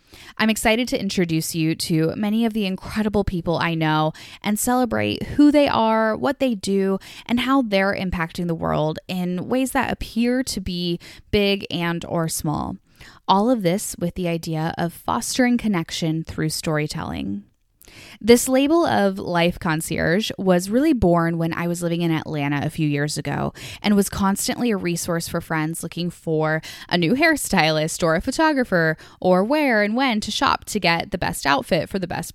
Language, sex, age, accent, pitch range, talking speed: English, female, 10-29, American, 165-225 Hz, 175 wpm